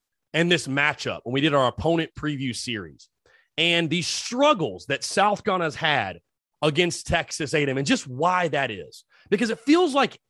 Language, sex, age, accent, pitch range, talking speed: English, male, 30-49, American, 135-190 Hz, 175 wpm